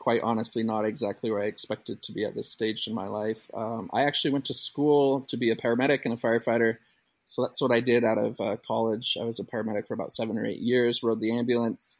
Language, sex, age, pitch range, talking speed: English, male, 30-49, 115-140 Hz, 250 wpm